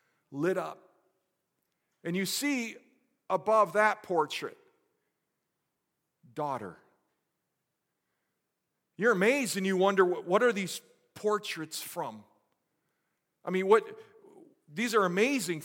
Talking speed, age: 95 wpm, 50-69